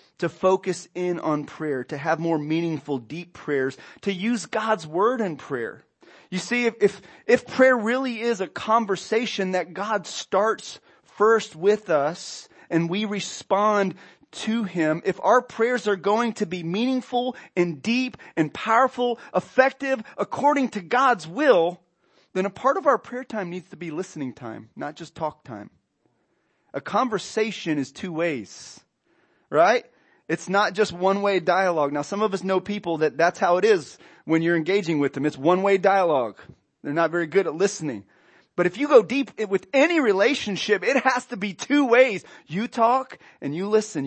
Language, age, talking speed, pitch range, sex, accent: English, 30-49, 170 wpm, 165-225 Hz, male, American